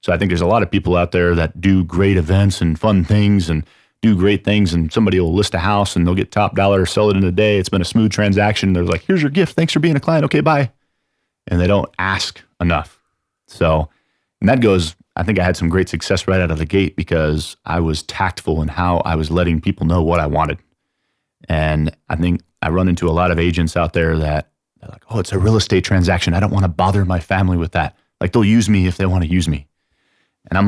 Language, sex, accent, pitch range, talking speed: English, male, American, 85-100 Hz, 255 wpm